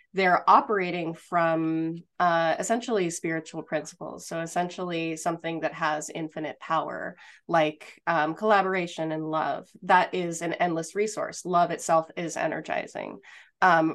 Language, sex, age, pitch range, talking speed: English, female, 20-39, 160-185 Hz, 125 wpm